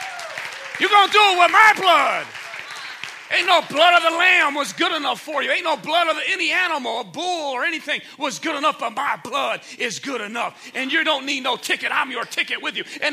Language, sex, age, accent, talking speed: English, male, 40-59, American, 235 wpm